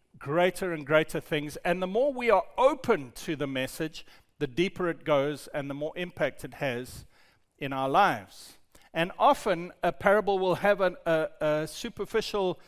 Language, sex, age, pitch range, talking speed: English, male, 50-69, 150-200 Hz, 165 wpm